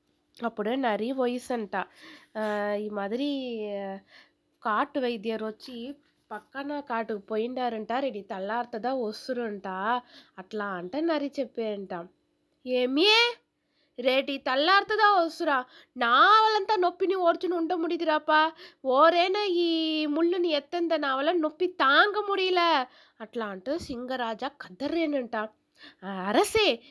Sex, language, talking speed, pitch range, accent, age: female, Telugu, 85 wpm, 230-335 Hz, native, 20-39